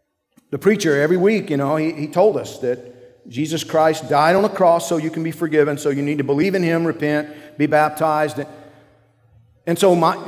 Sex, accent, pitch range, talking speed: male, American, 135-180 Hz, 205 wpm